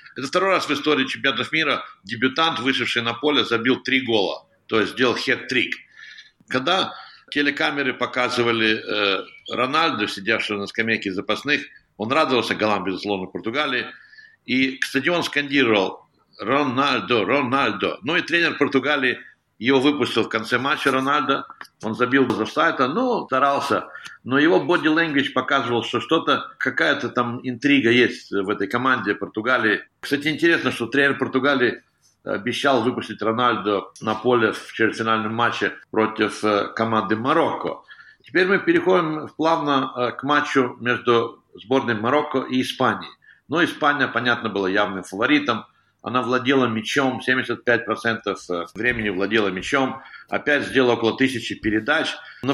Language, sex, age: Russian, male, 60-79